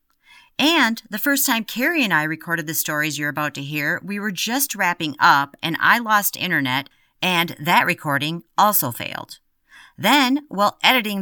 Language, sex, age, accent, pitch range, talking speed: English, female, 40-59, American, 145-200 Hz, 165 wpm